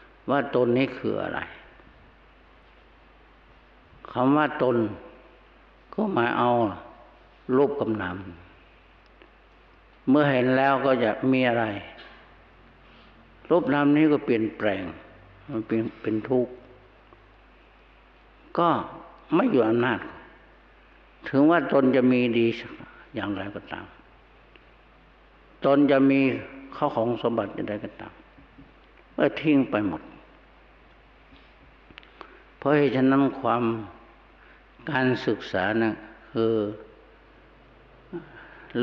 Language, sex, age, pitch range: Thai, male, 60-79, 110-130 Hz